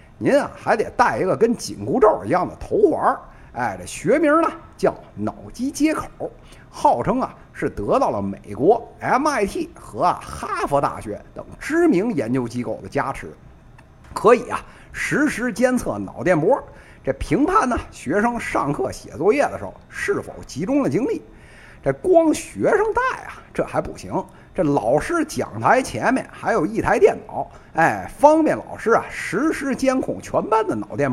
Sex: male